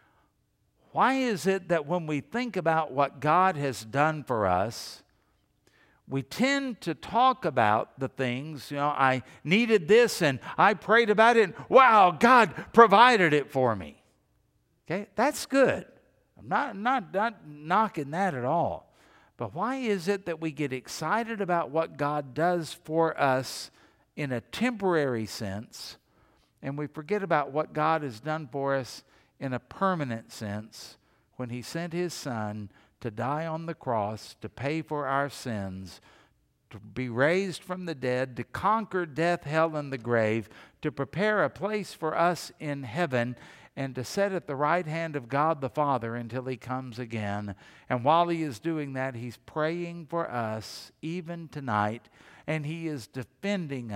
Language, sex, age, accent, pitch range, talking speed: English, male, 60-79, American, 125-175 Hz, 165 wpm